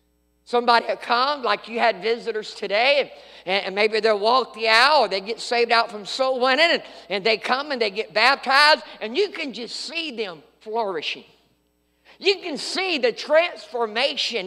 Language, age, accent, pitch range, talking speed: English, 50-69, American, 225-315 Hz, 175 wpm